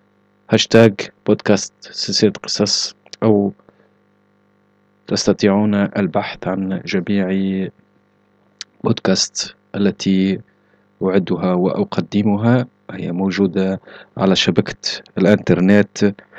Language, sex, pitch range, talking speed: Arabic, male, 95-105 Hz, 65 wpm